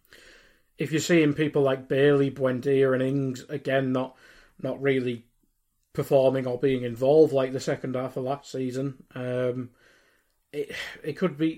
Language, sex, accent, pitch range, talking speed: English, male, British, 130-160 Hz, 150 wpm